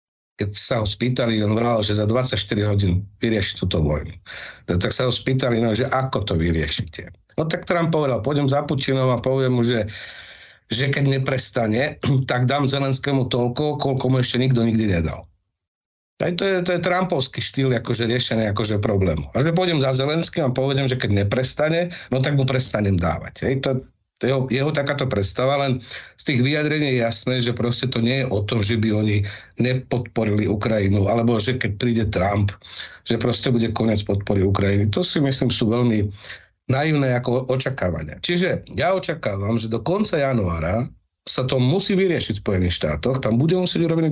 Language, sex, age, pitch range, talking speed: Slovak, male, 50-69, 105-135 Hz, 175 wpm